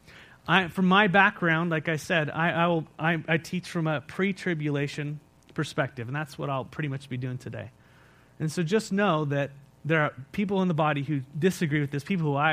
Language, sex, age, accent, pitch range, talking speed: English, male, 30-49, American, 150-210 Hz, 210 wpm